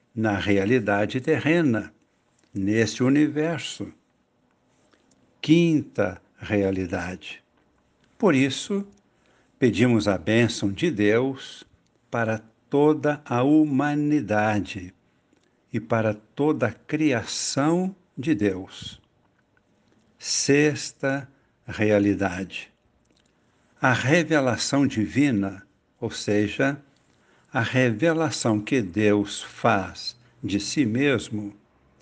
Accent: Brazilian